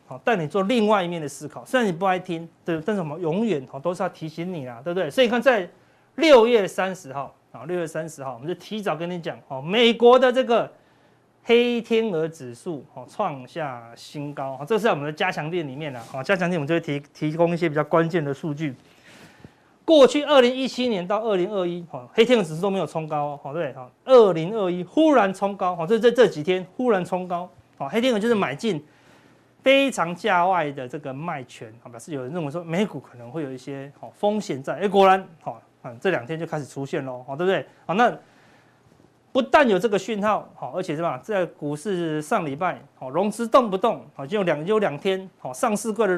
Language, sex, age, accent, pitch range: Chinese, male, 30-49, native, 150-215 Hz